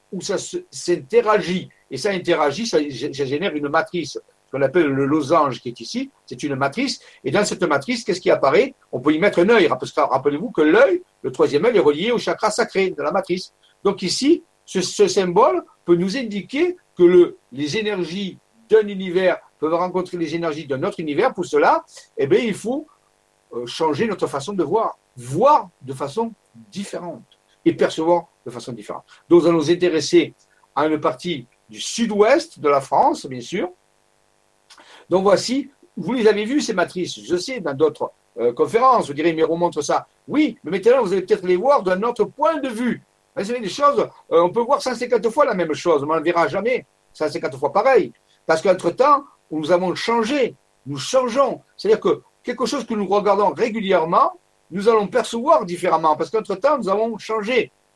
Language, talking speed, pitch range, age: French, 185 wpm, 160-255 Hz, 60-79